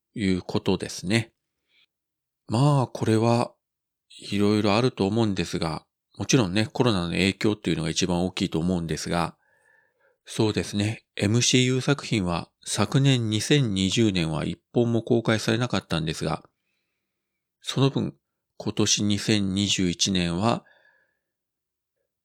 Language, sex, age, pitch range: Japanese, male, 40-59, 90-120 Hz